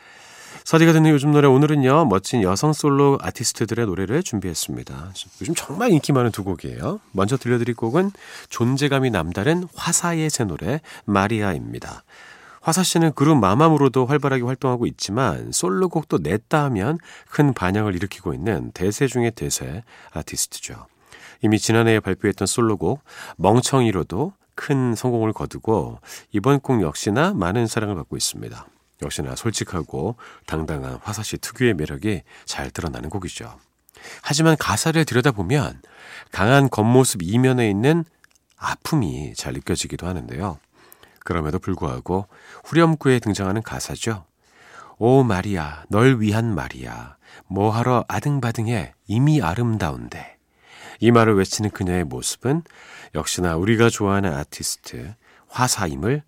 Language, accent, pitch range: Korean, native, 95-140 Hz